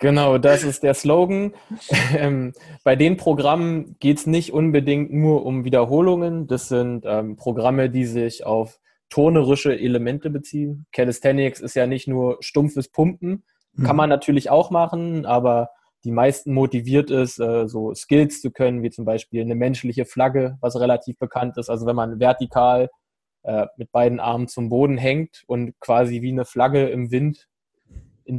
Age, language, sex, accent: 20-39, German, male, German